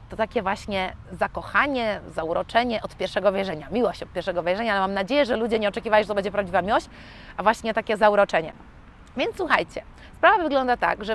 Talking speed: 185 wpm